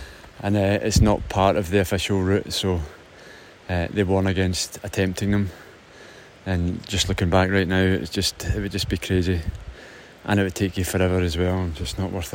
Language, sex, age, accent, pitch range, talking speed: English, male, 20-39, British, 95-115 Hz, 200 wpm